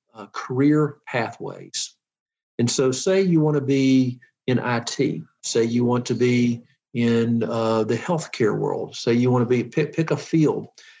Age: 50-69